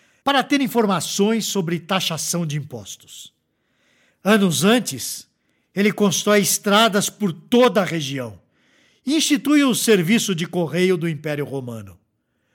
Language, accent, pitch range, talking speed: Portuguese, Brazilian, 160-225 Hz, 120 wpm